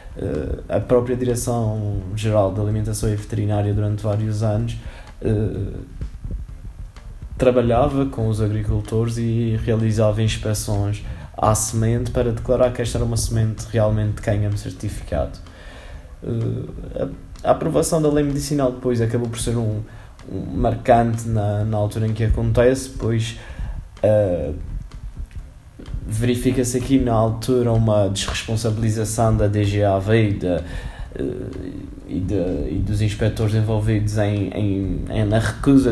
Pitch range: 105-120 Hz